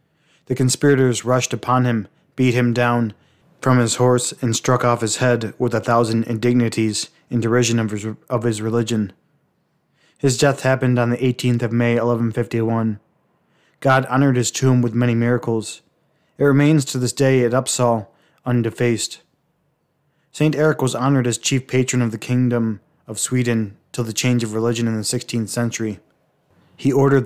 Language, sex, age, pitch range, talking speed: English, male, 20-39, 115-130 Hz, 165 wpm